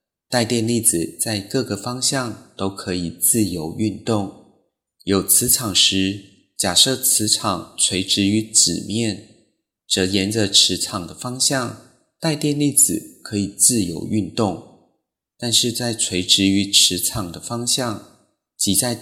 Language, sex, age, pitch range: Chinese, male, 30-49, 95-120 Hz